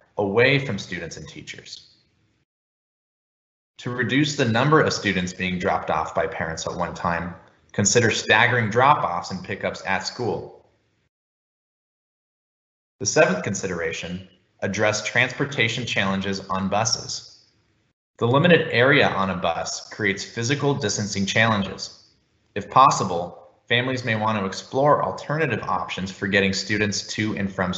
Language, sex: English, male